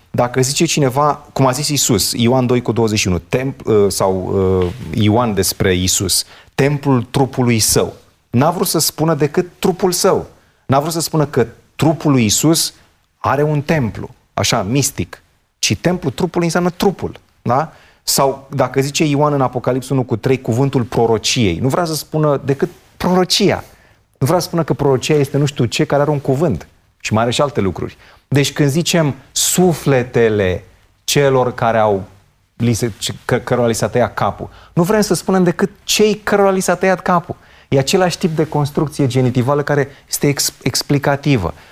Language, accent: Romanian, native